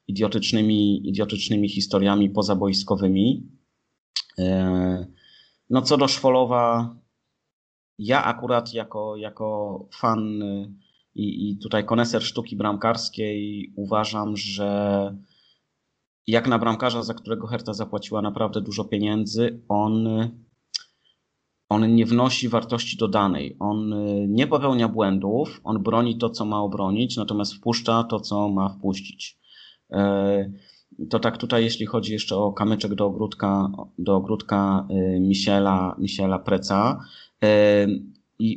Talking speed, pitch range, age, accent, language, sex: 105 wpm, 100-115 Hz, 30-49, native, Polish, male